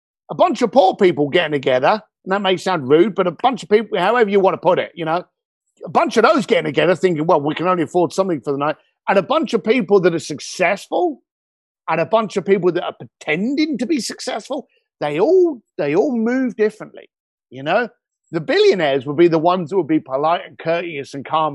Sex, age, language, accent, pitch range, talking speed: male, 50-69, English, British, 155-225 Hz, 230 wpm